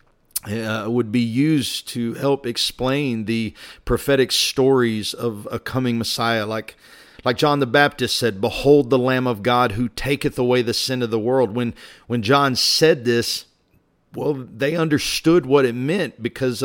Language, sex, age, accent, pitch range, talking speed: English, male, 50-69, American, 120-145 Hz, 160 wpm